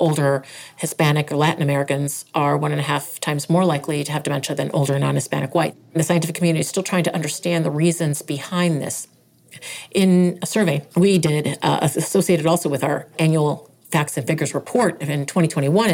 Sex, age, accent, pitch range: female, 40-59, American, 155-180 Hz